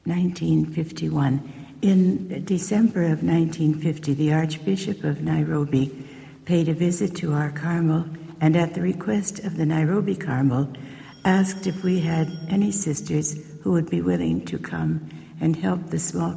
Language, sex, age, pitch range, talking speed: English, female, 60-79, 150-170 Hz, 145 wpm